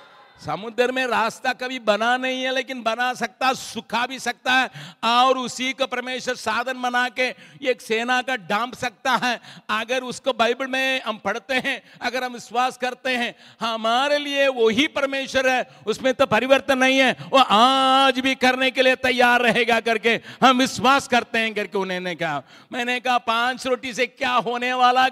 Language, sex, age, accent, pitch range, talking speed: Hindi, male, 60-79, native, 180-250 Hz, 175 wpm